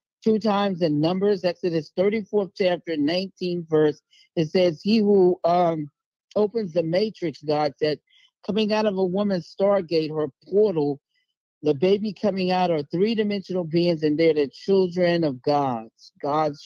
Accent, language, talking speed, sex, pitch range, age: American, English, 150 wpm, male, 145-185 Hz, 50-69